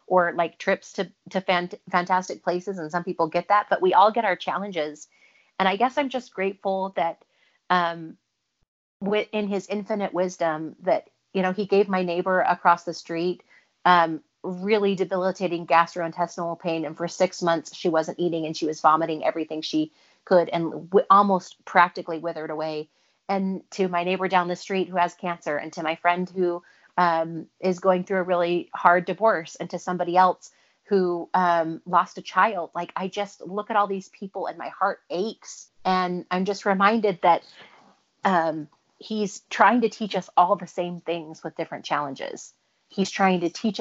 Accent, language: American, English